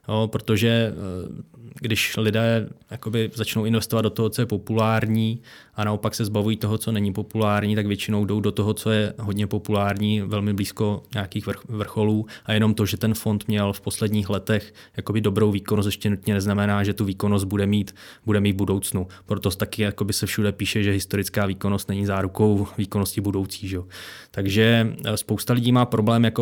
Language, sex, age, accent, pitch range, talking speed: Czech, male, 20-39, native, 105-115 Hz, 170 wpm